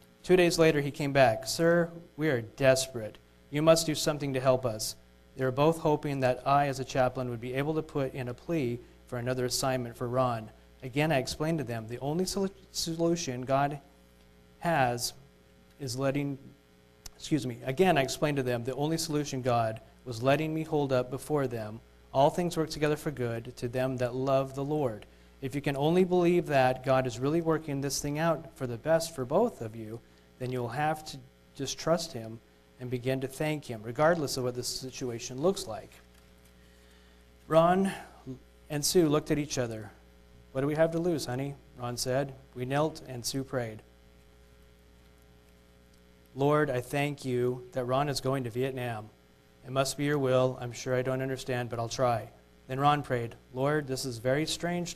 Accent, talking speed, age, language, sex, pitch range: American, 190 wpm, 40-59, English, male, 120-150 Hz